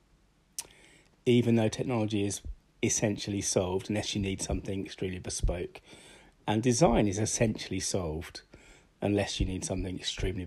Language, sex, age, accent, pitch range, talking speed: English, male, 30-49, British, 95-125 Hz, 125 wpm